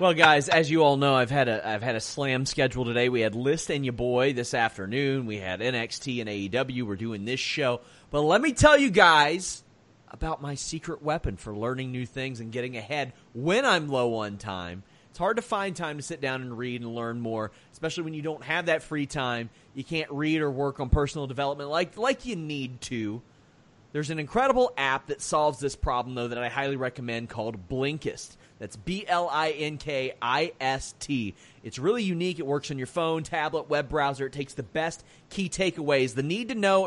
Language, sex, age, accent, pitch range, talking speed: English, male, 30-49, American, 125-165 Hz, 200 wpm